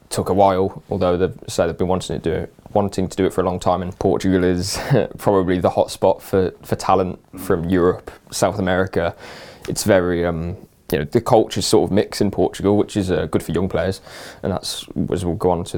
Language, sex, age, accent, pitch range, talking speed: English, male, 20-39, British, 90-105 Hz, 230 wpm